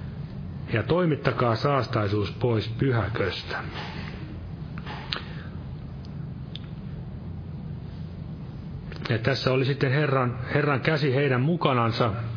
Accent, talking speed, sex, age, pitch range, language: native, 70 wpm, male, 40-59, 115-140 Hz, Finnish